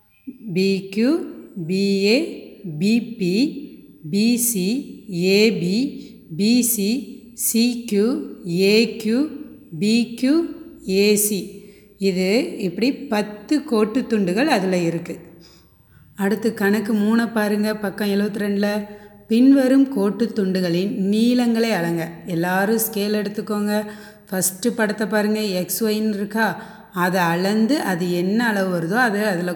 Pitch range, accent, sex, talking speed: 190-230 Hz, native, female, 90 wpm